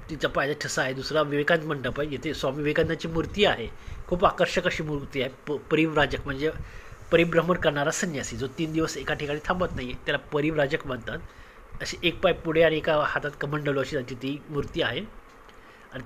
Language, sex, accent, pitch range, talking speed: Marathi, male, native, 135-170 Hz, 185 wpm